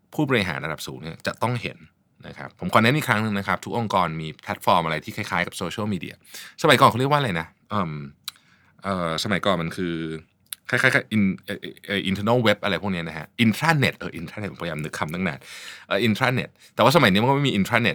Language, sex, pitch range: Thai, male, 85-125 Hz